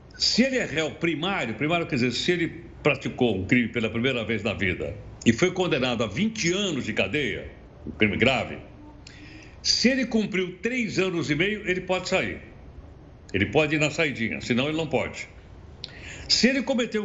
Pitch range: 120-180 Hz